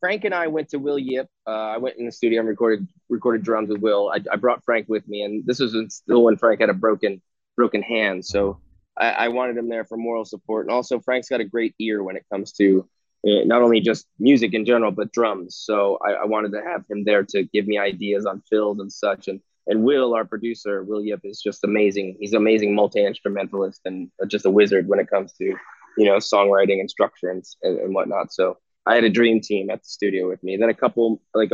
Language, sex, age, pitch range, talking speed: English, male, 20-39, 105-120 Hz, 240 wpm